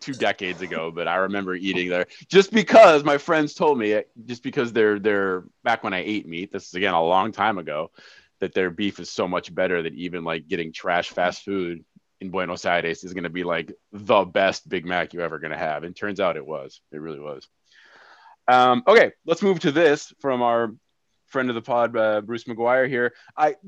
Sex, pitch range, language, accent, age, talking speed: male, 95-145 Hz, English, American, 20-39, 220 wpm